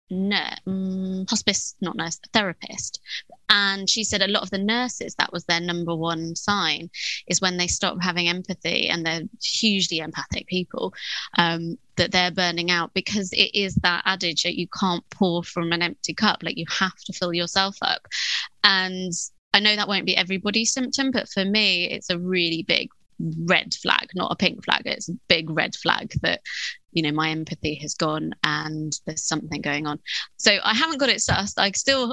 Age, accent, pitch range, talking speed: 20-39, British, 170-220 Hz, 190 wpm